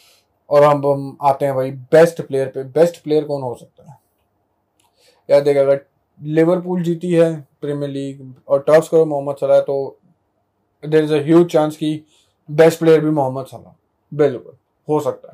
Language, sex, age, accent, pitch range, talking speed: Hindi, male, 20-39, native, 130-150 Hz, 160 wpm